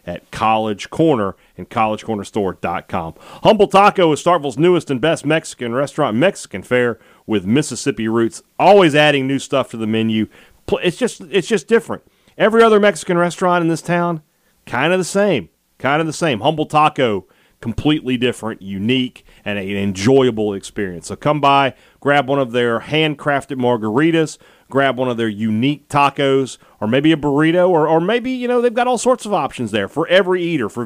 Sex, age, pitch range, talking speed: male, 40-59, 125-175 Hz, 175 wpm